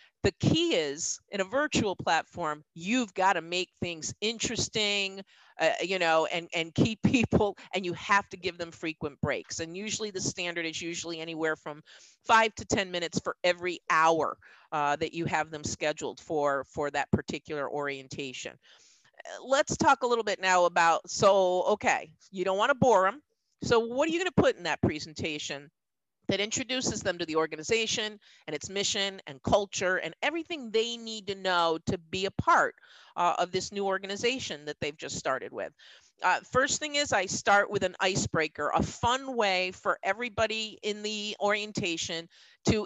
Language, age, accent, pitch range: English, 50-69, American, 165-220 Hz